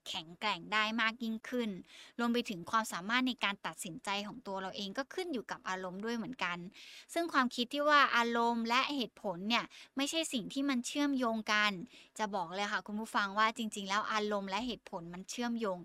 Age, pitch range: 20-39, 205-255 Hz